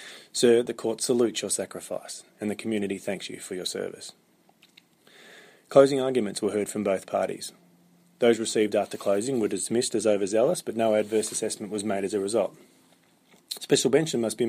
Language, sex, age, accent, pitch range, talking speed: English, male, 20-39, Australian, 105-120 Hz, 175 wpm